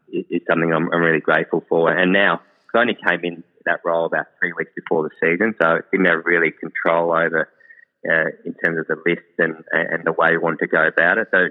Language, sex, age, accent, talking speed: English, male, 20-39, Australian, 230 wpm